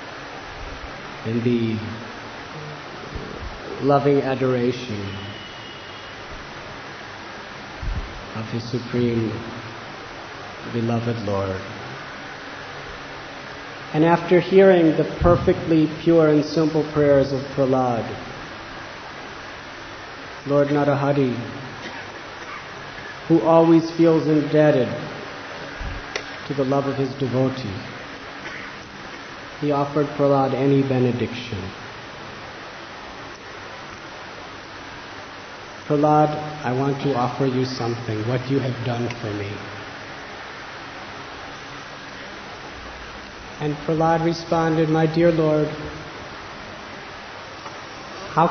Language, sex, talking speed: English, male, 70 wpm